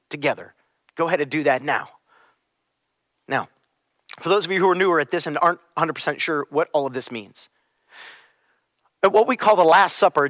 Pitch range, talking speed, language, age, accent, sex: 155-215 Hz, 190 wpm, English, 40-59, American, male